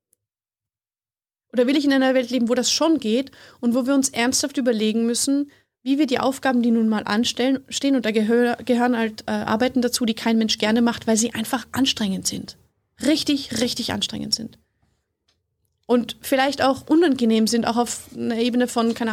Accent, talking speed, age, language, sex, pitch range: German, 180 wpm, 20-39, German, female, 220-260 Hz